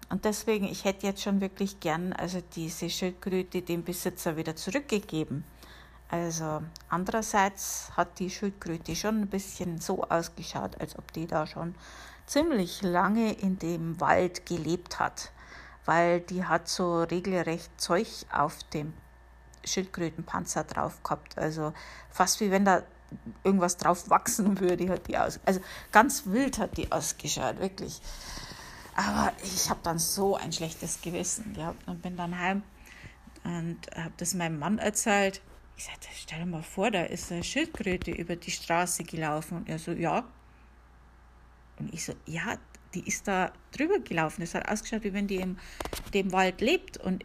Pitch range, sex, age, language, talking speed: 165-195 Hz, female, 50-69, German, 155 wpm